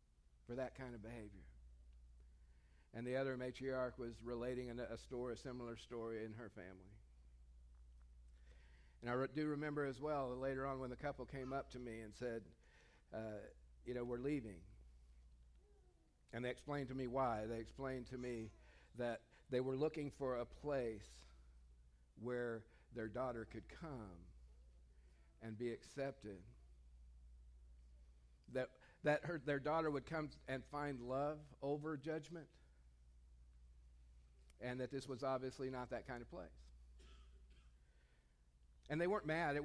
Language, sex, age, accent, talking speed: English, male, 50-69, American, 140 wpm